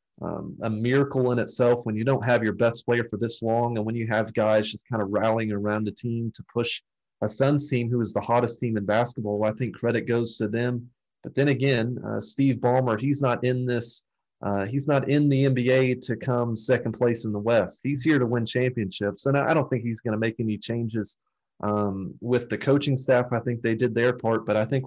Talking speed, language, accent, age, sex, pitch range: 235 wpm, English, American, 30-49, male, 110-130 Hz